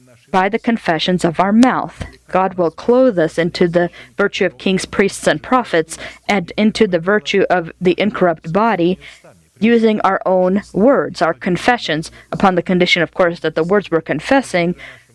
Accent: American